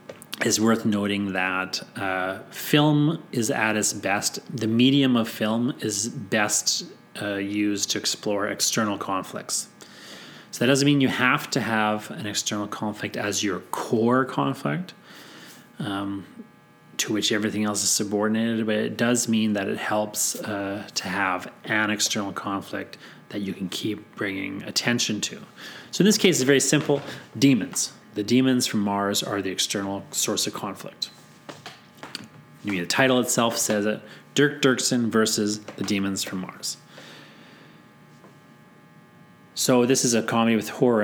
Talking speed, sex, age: 150 wpm, male, 30-49